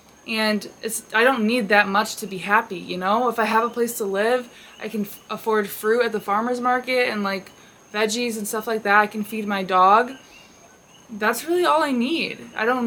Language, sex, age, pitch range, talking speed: English, female, 20-39, 200-235 Hz, 220 wpm